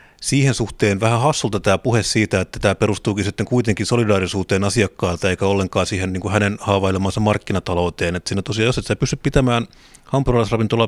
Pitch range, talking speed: 95-120 Hz, 170 wpm